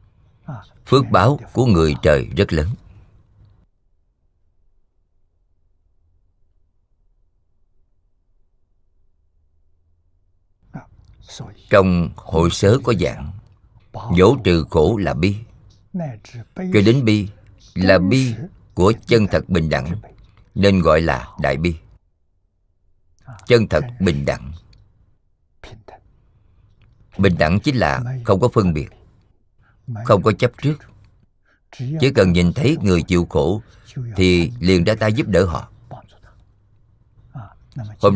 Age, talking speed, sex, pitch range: 50-69, 100 wpm, male, 85-110 Hz